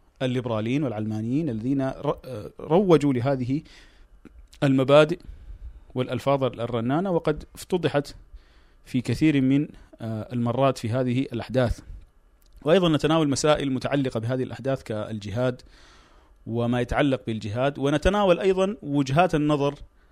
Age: 40-59